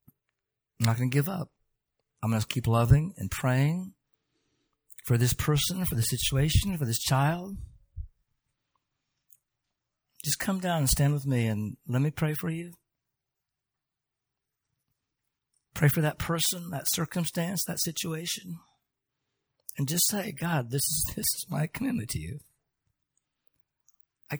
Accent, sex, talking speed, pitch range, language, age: American, male, 135 wpm, 125-160 Hz, English, 50-69